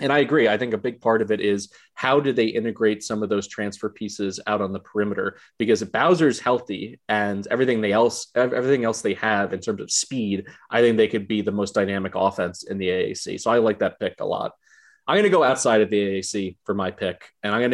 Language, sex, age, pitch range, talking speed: English, male, 30-49, 100-120 Hz, 240 wpm